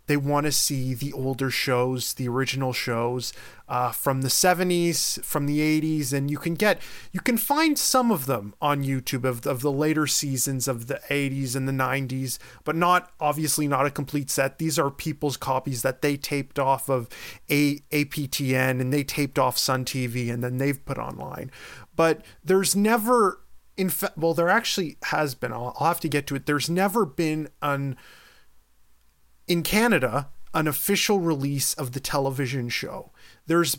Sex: male